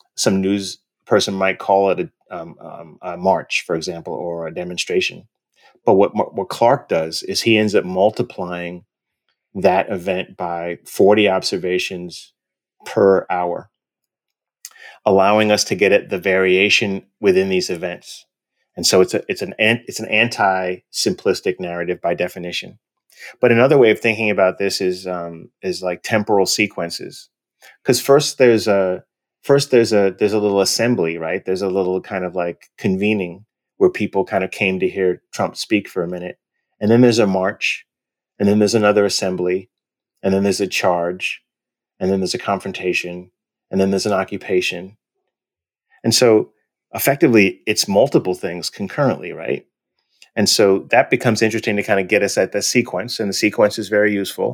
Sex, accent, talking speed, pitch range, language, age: male, American, 170 wpm, 90-105 Hz, English, 30-49